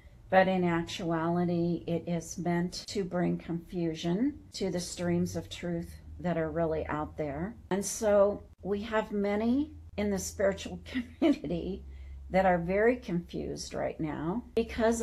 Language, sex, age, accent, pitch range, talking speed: English, female, 50-69, American, 165-200 Hz, 140 wpm